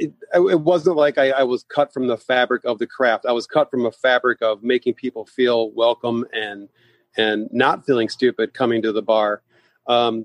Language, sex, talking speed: English, male, 205 wpm